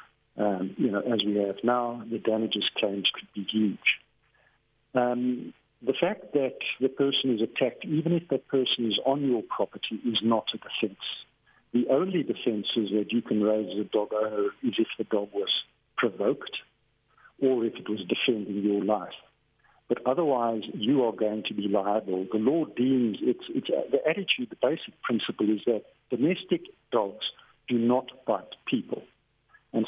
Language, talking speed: English, 170 wpm